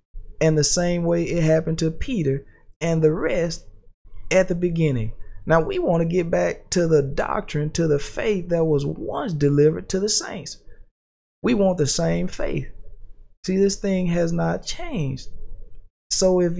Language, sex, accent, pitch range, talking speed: English, male, American, 130-180 Hz, 165 wpm